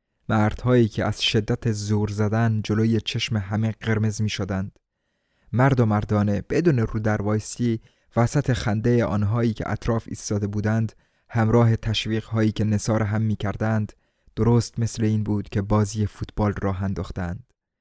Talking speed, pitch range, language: 135 wpm, 105-120 Hz, Persian